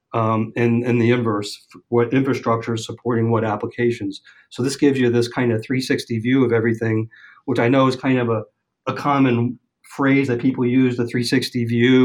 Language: English